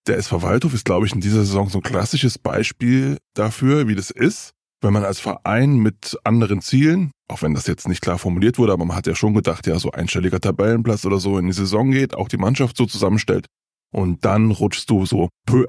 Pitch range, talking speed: 100-120 Hz, 225 wpm